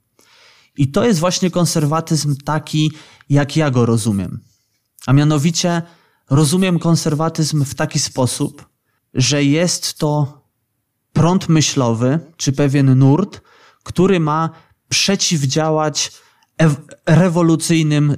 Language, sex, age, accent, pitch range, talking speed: Polish, male, 20-39, native, 130-160 Hz, 95 wpm